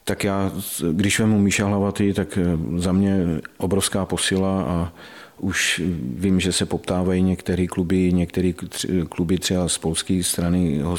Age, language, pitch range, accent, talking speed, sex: 40-59, Czech, 85-95 Hz, native, 140 wpm, male